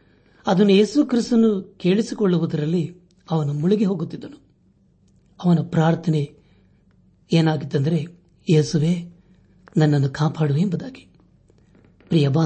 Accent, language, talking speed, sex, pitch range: native, Kannada, 70 wpm, male, 145-180 Hz